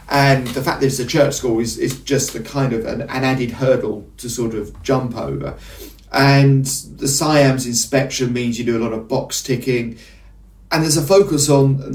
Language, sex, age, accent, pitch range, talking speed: English, male, 40-59, British, 120-145 Hz, 205 wpm